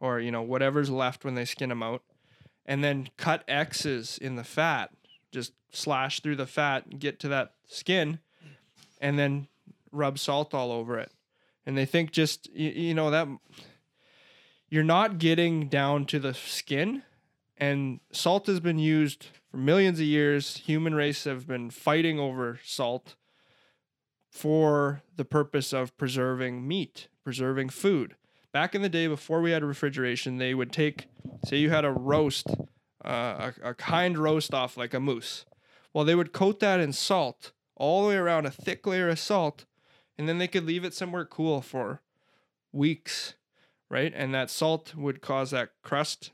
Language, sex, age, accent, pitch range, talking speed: English, male, 20-39, American, 135-160 Hz, 170 wpm